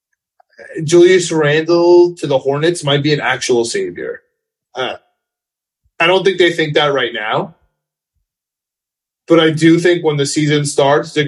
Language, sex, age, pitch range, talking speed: English, male, 20-39, 150-180 Hz, 150 wpm